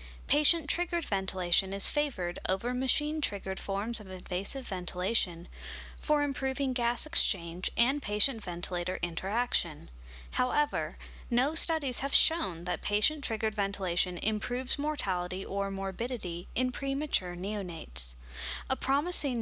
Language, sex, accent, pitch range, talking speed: English, female, American, 185-260 Hz, 105 wpm